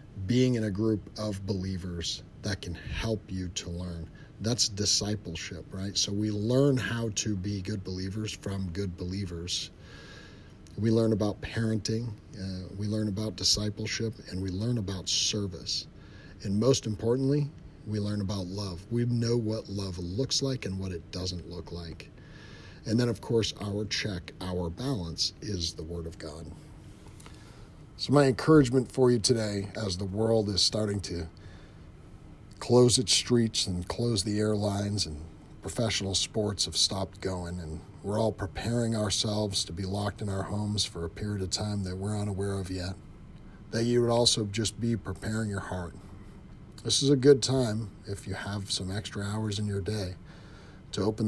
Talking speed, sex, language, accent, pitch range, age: 165 wpm, male, English, American, 95-110 Hz, 40-59